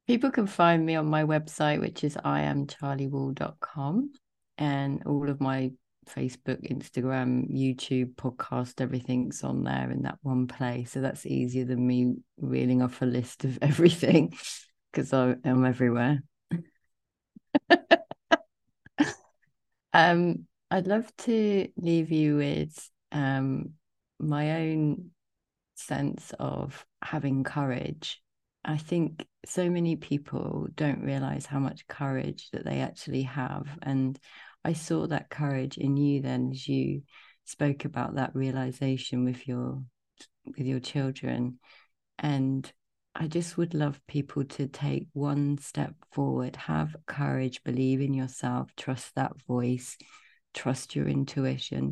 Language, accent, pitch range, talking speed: English, British, 125-155 Hz, 125 wpm